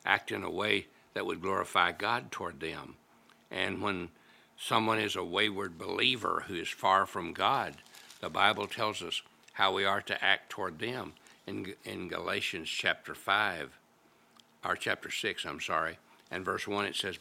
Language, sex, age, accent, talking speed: English, male, 60-79, American, 165 wpm